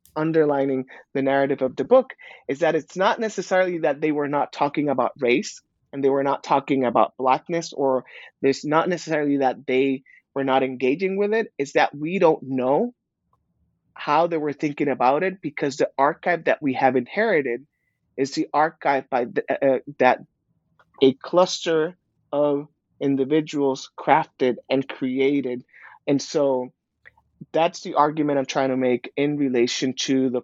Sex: male